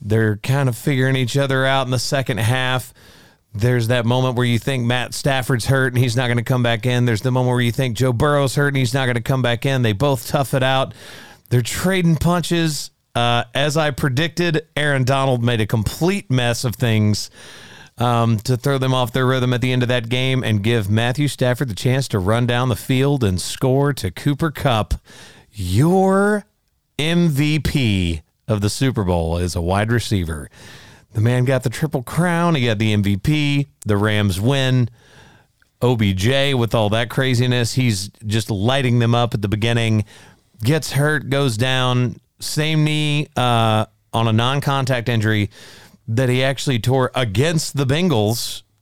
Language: English